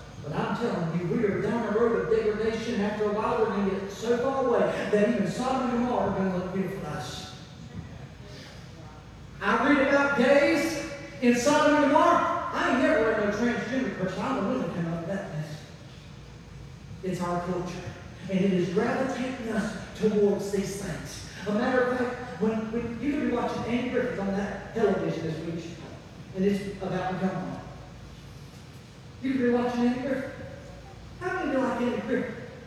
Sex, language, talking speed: male, English, 185 wpm